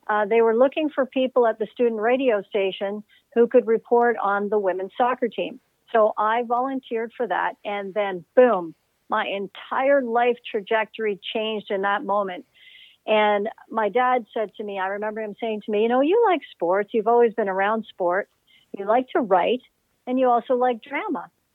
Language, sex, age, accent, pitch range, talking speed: English, female, 50-69, American, 200-240 Hz, 185 wpm